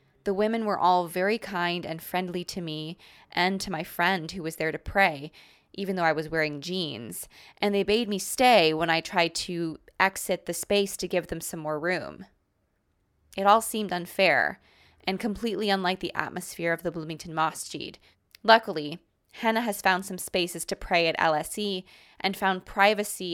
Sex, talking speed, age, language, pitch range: female, 175 wpm, 20-39, English, 165-200 Hz